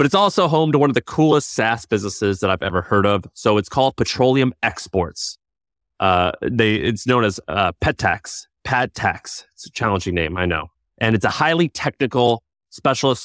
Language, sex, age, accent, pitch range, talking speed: English, male, 30-49, American, 95-125 Hz, 185 wpm